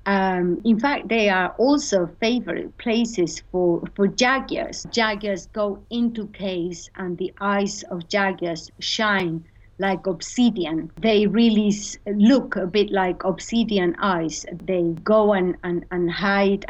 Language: English